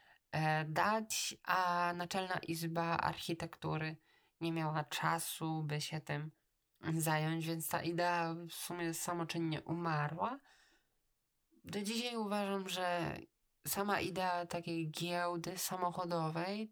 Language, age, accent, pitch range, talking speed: Polish, 20-39, native, 165-185 Hz, 100 wpm